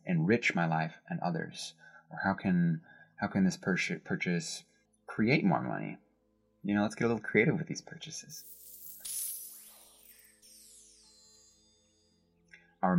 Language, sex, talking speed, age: English, male, 120 wpm, 20-39